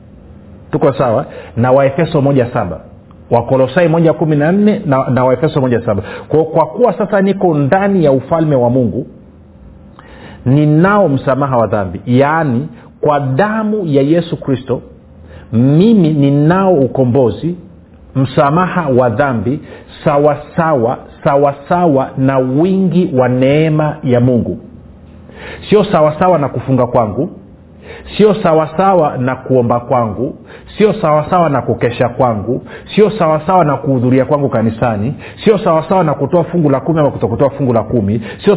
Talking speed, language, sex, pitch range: 130 wpm, Swahili, male, 125-165 Hz